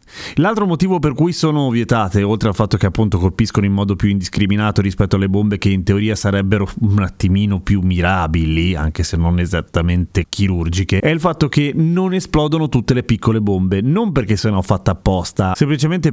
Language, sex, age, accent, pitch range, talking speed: Italian, male, 30-49, native, 105-165 Hz, 185 wpm